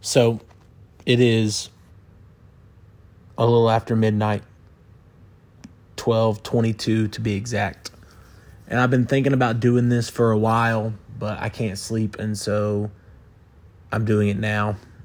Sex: male